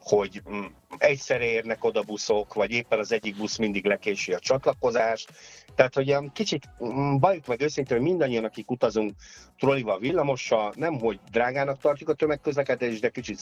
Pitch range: 105-140 Hz